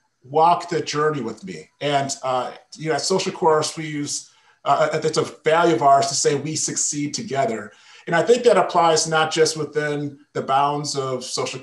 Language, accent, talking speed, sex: English, American, 190 wpm, male